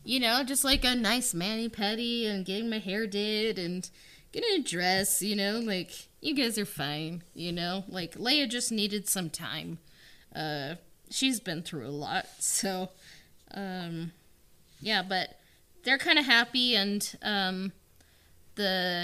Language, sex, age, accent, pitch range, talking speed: English, female, 20-39, American, 170-205 Hz, 150 wpm